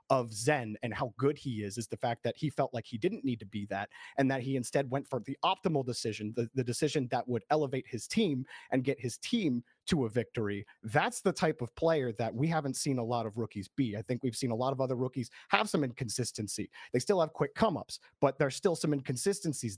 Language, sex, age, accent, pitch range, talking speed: English, male, 30-49, American, 115-155 Hz, 245 wpm